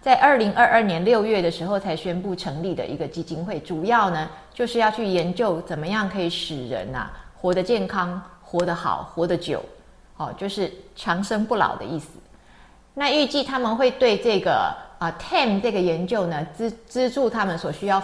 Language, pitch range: Chinese, 170-225 Hz